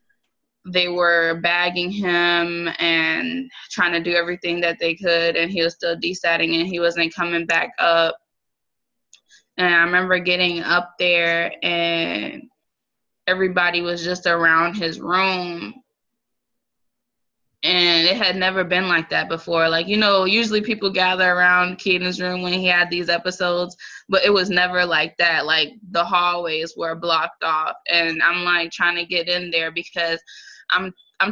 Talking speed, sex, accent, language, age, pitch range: 155 wpm, female, American, English, 20-39, 170-190 Hz